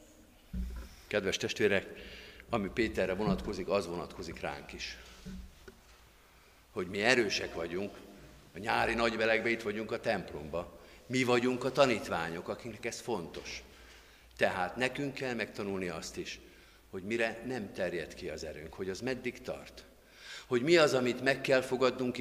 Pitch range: 100-130 Hz